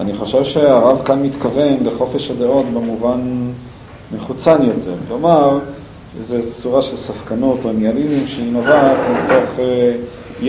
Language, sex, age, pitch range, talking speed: Hebrew, male, 40-59, 110-130 Hz, 120 wpm